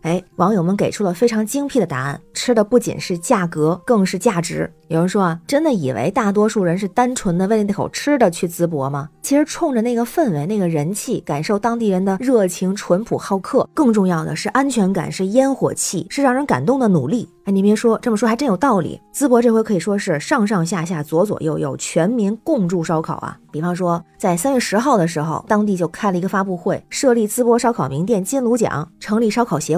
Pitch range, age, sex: 175-235 Hz, 20-39, female